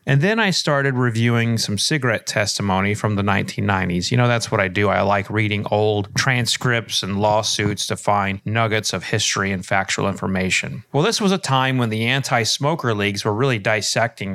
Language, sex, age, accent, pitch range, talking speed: English, male, 30-49, American, 105-140 Hz, 185 wpm